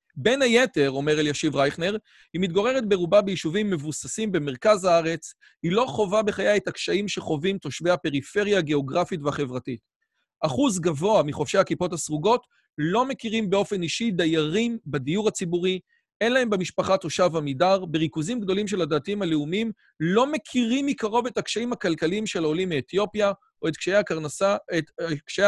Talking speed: 135 wpm